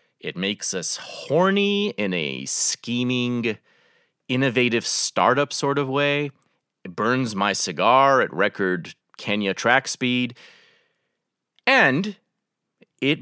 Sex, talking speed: male, 105 wpm